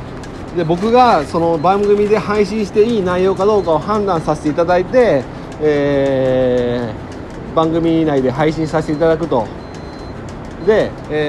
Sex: male